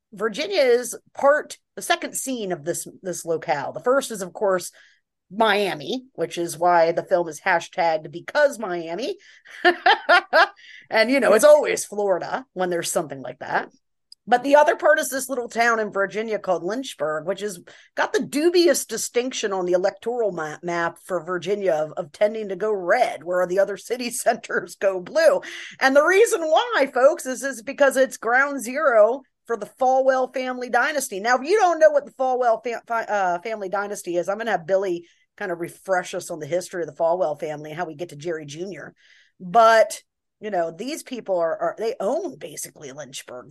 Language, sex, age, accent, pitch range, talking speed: English, female, 40-59, American, 180-265 Hz, 185 wpm